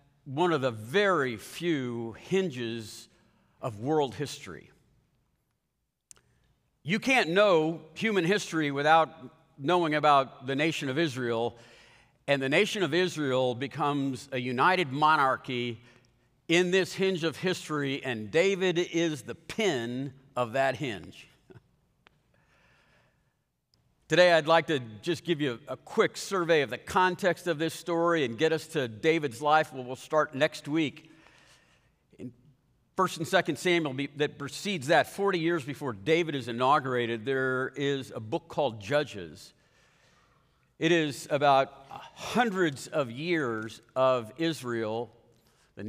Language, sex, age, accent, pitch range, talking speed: English, male, 50-69, American, 130-170 Hz, 130 wpm